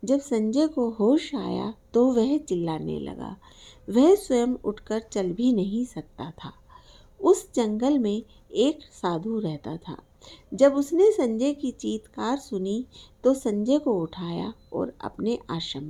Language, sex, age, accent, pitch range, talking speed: Hindi, female, 50-69, native, 195-275 Hz, 140 wpm